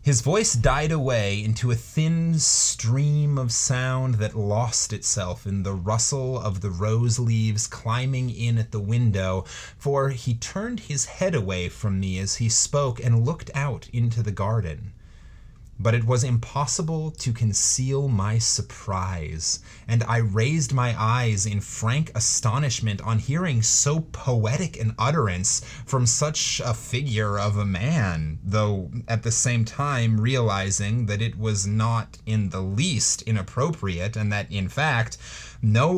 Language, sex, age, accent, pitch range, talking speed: English, male, 30-49, American, 100-130 Hz, 150 wpm